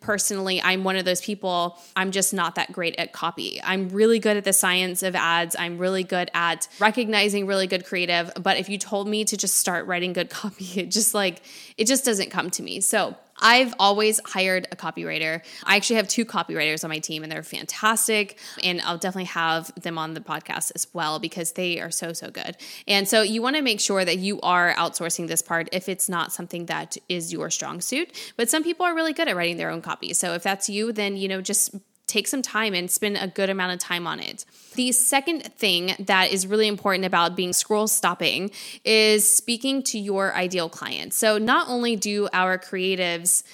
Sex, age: female, 20-39